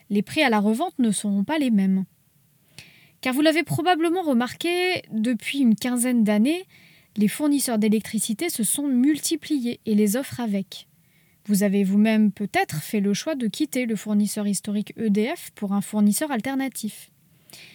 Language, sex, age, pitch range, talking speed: French, female, 20-39, 205-285 Hz, 155 wpm